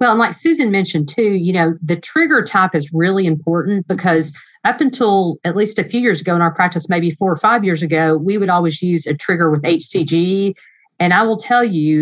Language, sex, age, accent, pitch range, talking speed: English, female, 40-59, American, 165-205 Hz, 225 wpm